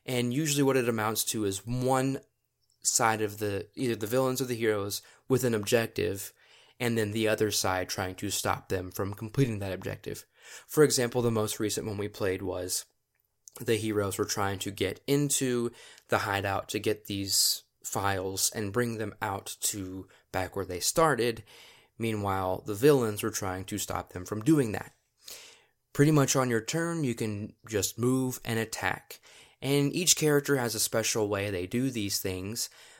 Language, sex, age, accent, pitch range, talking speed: English, male, 20-39, American, 100-125 Hz, 175 wpm